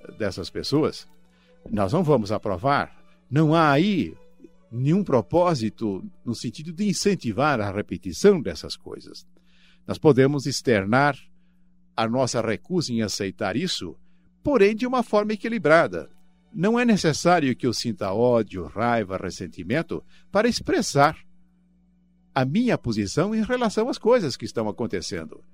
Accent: Brazilian